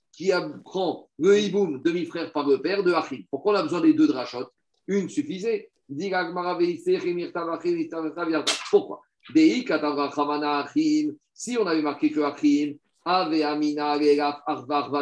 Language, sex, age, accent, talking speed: French, male, 50-69, French, 115 wpm